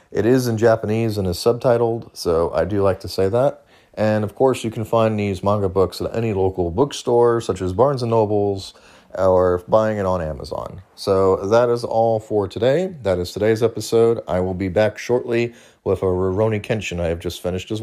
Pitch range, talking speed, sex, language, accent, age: 95-120 Hz, 200 wpm, male, English, American, 30-49